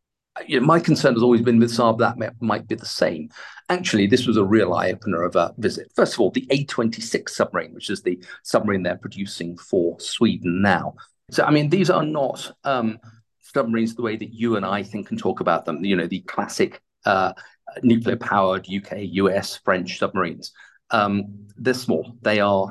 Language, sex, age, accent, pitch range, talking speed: English, male, 40-59, British, 100-120 Hz, 190 wpm